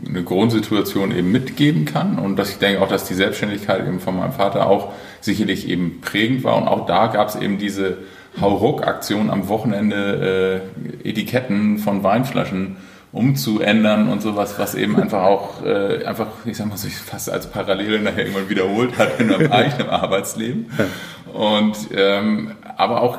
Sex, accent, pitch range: male, German, 110-125 Hz